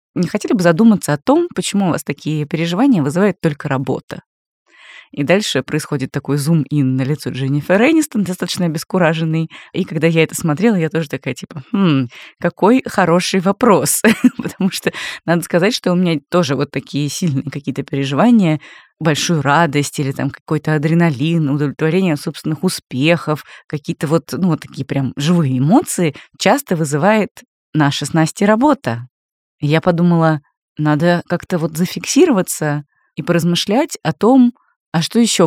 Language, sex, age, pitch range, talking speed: Russian, female, 20-39, 145-185 Hz, 145 wpm